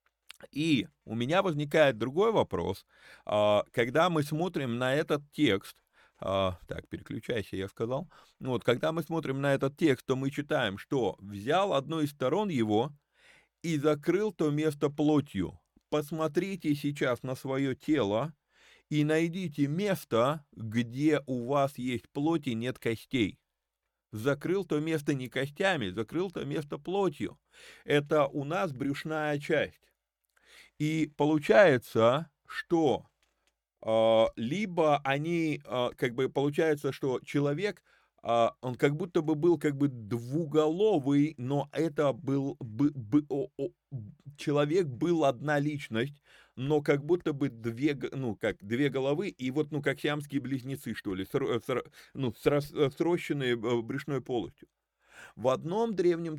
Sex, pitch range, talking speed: male, 130-155 Hz, 130 wpm